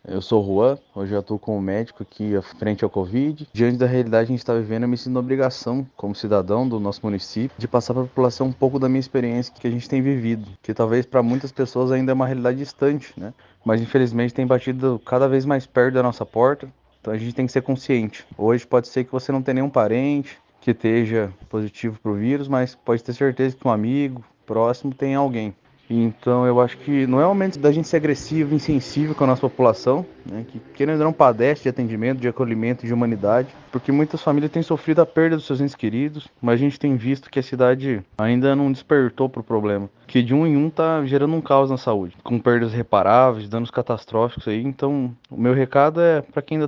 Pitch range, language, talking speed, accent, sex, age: 115-135 Hz, Portuguese, 235 wpm, Brazilian, male, 20-39